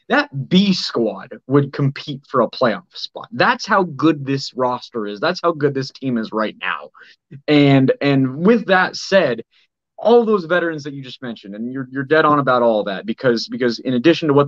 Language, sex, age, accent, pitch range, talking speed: English, male, 20-39, American, 125-160 Hz, 205 wpm